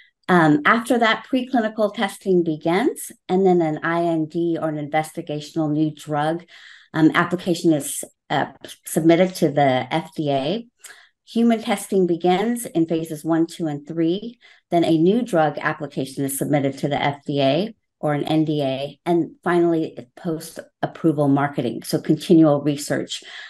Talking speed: 135 wpm